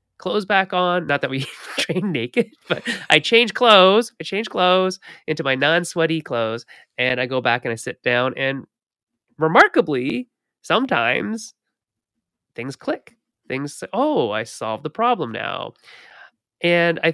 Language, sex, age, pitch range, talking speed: English, male, 30-49, 120-180 Hz, 145 wpm